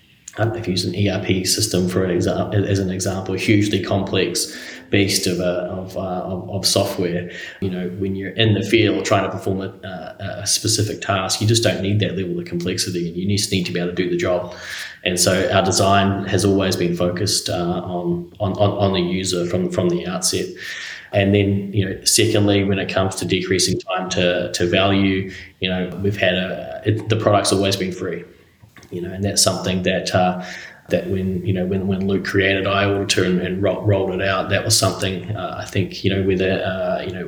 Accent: Australian